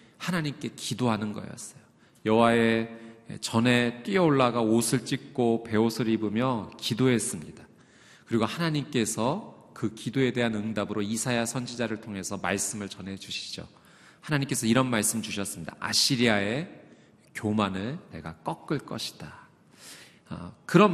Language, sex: Korean, male